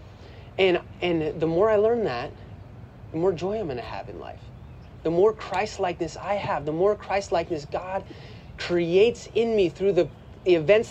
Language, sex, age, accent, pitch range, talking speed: English, male, 30-49, American, 115-195 Hz, 175 wpm